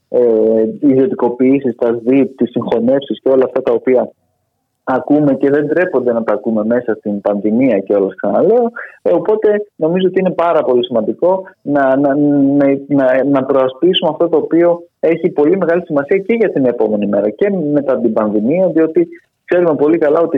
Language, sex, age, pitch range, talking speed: Greek, male, 20-39, 130-185 Hz, 175 wpm